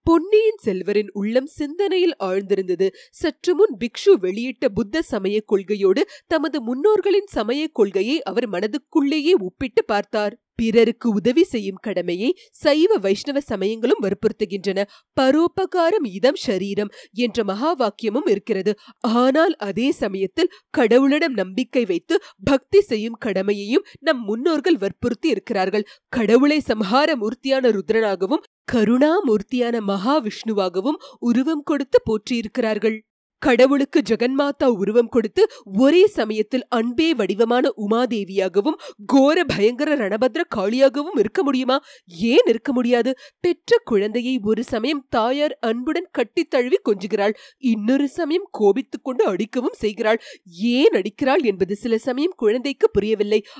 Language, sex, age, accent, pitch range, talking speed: Tamil, female, 30-49, native, 215-300 Hz, 105 wpm